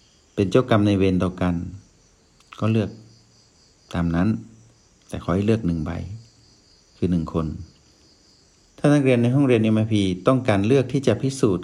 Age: 60-79